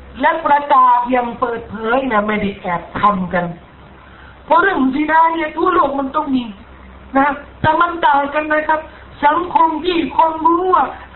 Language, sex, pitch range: Thai, male, 255-335 Hz